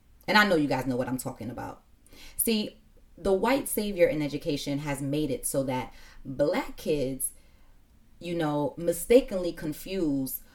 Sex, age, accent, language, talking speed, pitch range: female, 20-39, American, English, 155 wpm, 145-200 Hz